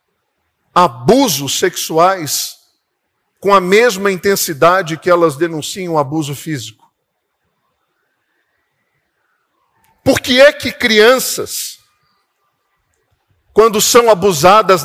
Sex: male